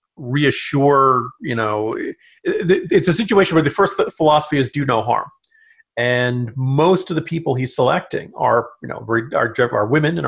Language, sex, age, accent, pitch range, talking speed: English, male, 40-59, American, 130-185 Hz, 180 wpm